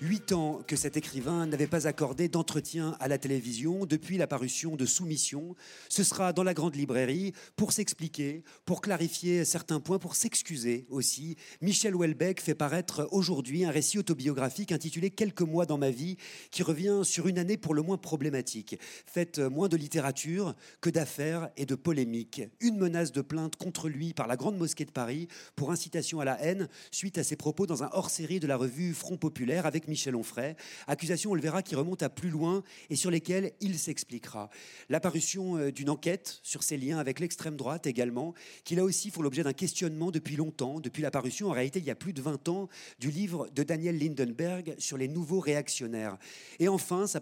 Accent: French